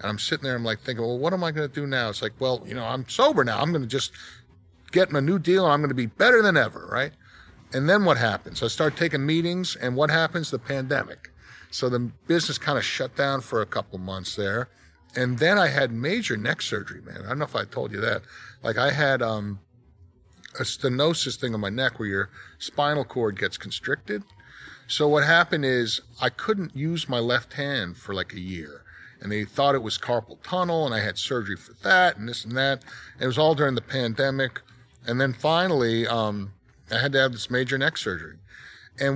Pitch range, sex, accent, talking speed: 110-145 Hz, male, American, 230 wpm